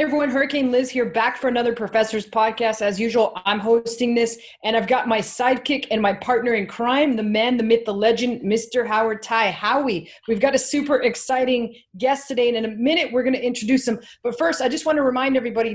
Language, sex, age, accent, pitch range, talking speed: English, female, 20-39, American, 225-265 Hz, 220 wpm